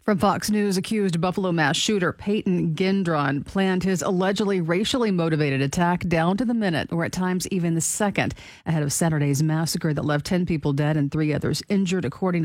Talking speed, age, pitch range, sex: 190 wpm, 40-59, 155-195 Hz, female